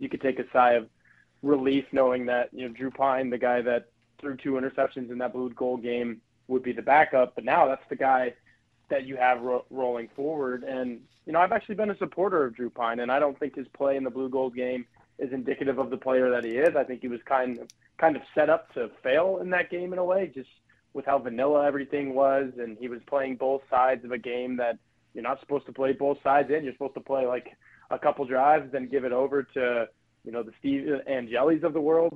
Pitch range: 125-145 Hz